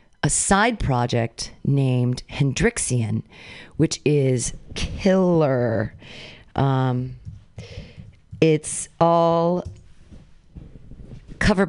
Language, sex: English, female